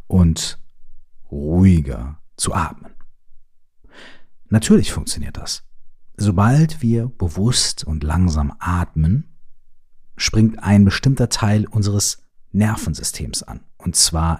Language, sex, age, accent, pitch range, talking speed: German, male, 40-59, German, 80-105 Hz, 90 wpm